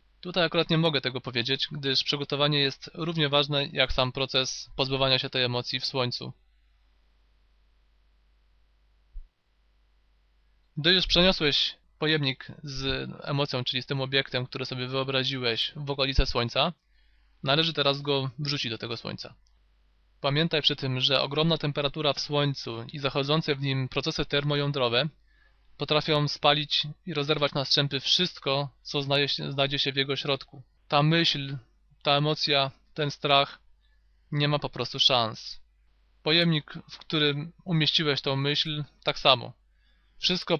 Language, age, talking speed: Polish, 20-39, 135 wpm